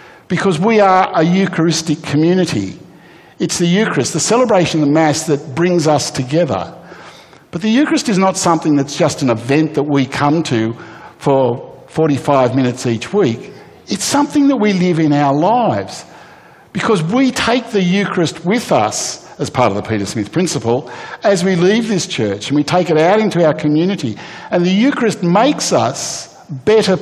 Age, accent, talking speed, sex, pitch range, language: 60-79, Australian, 175 wpm, male, 145-205 Hz, English